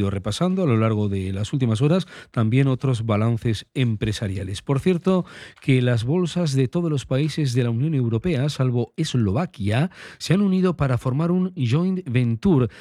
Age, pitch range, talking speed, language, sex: 40-59, 115-155 Hz, 165 wpm, Spanish, male